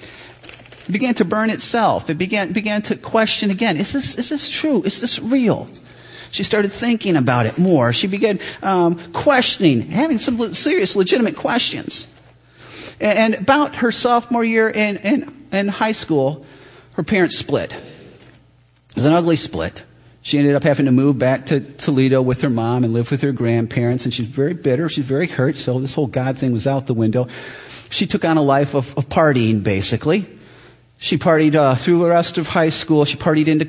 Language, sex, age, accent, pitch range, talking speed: English, male, 40-59, American, 130-185 Hz, 190 wpm